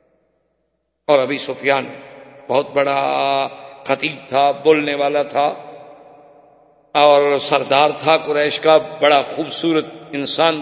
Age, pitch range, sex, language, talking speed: 50-69, 145-190 Hz, male, Urdu, 100 wpm